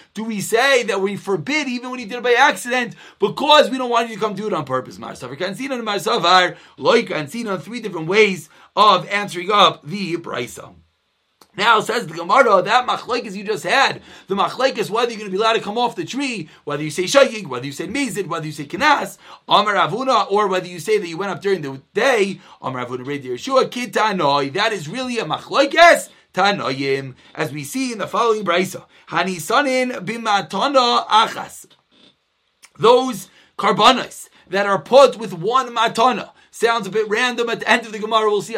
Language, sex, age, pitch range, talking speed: English, male, 30-49, 185-240 Hz, 185 wpm